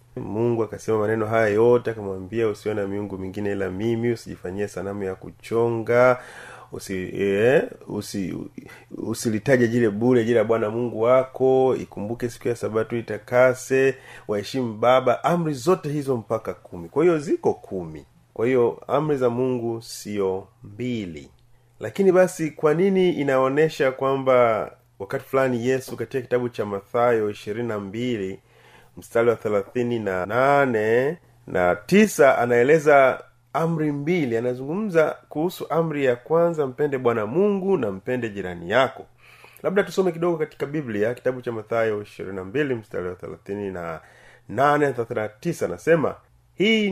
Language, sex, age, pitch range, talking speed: Swahili, male, 30-49, 105-135 Hz, 130 wpm